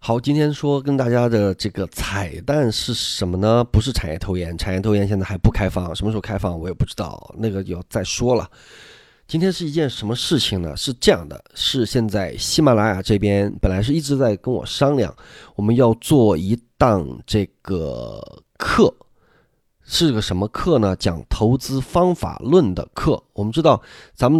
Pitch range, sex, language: 95-125 Hz, male, Chinese